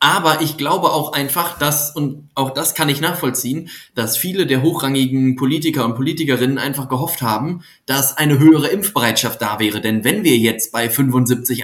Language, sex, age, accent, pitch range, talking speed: German, male, 20-39, German, 125-145 Hz, 175 wpm